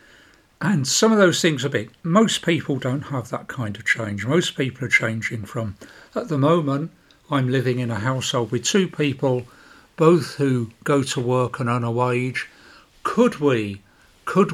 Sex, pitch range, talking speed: male, 120-145 Hz, 175 wpm